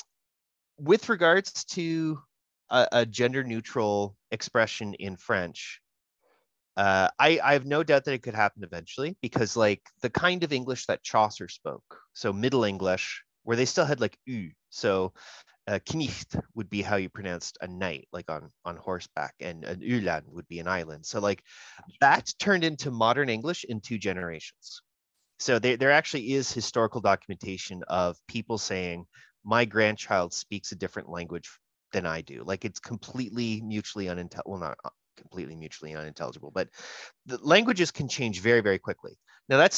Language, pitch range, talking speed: English, 95-140 Hz, 165 wpm